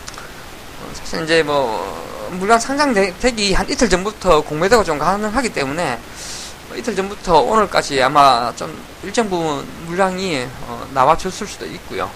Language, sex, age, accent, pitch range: Korean, male, 20-39, native, 130-195 Hz